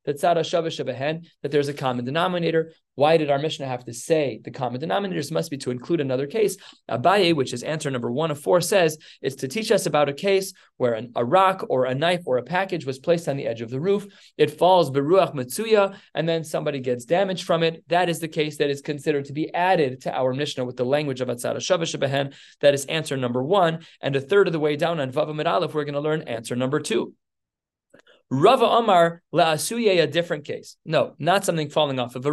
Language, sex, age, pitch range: English, male, 30-49, 135-180 Hz